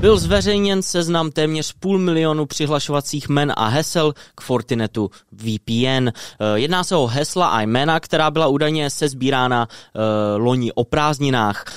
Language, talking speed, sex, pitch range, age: Czech, 140 wpm, male, 120-155 Hz, 20-39